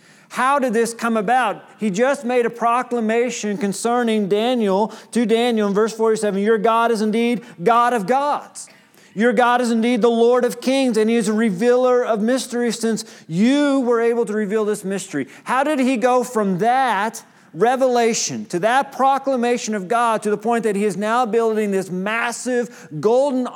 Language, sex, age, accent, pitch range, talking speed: English, male, 40-59, American, 190-240 Hz, 180 wpm